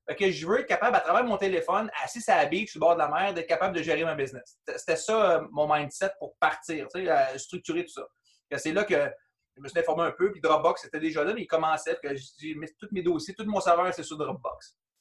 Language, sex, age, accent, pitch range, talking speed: French, male, 30-49, Canadian, 150-195 Hz, 260 wpm